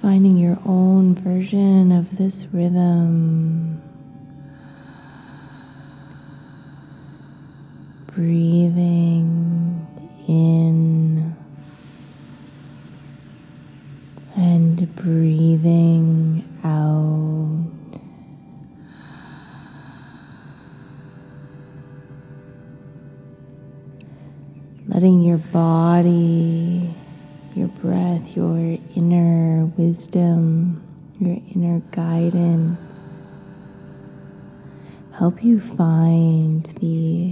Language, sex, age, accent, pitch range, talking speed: English, female, 20-39, American, 145-175 Hz, 45 wpm